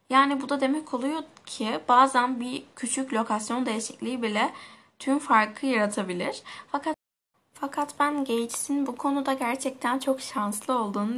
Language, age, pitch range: Turkish, 10-29, 215-270 Hz